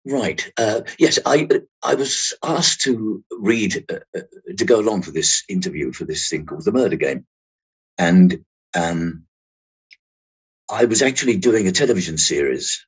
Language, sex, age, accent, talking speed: English, male, 50-69, British, 150 wpm